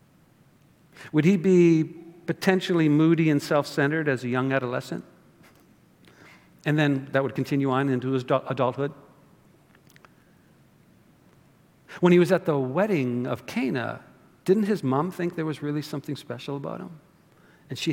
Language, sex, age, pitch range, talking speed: English, male, 50-69, 130-170 Hz, 140 wpm